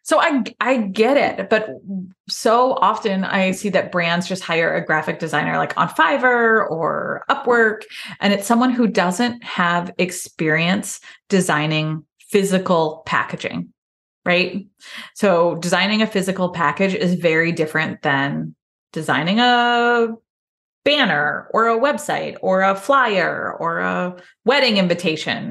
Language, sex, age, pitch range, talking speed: English, female, 20-39, 175-235 Hz, 130 wpm